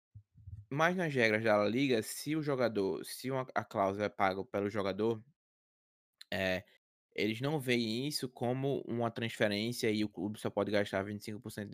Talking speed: 160 wpm